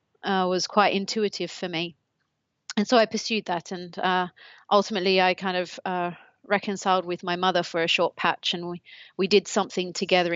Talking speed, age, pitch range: 185 wpm, 30-49, 170-195 Hz